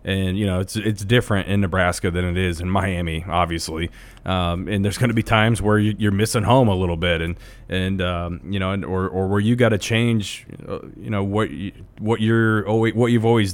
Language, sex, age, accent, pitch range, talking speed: English, male, 30-49, American, 95-110 Hz, 225 wpm